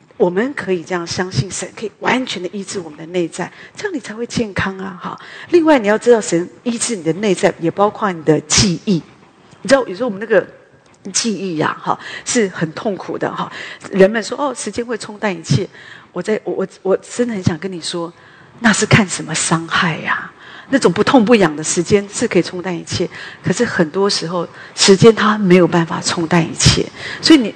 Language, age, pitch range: English, 40-59, 175-235 Hz